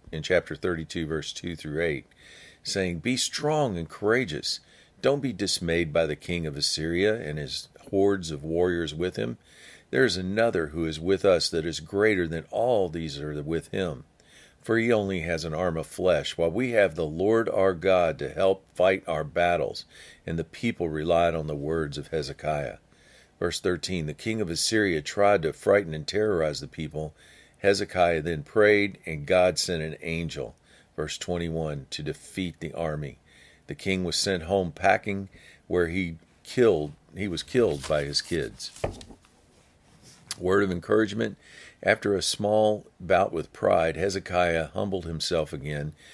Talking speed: 165 wpm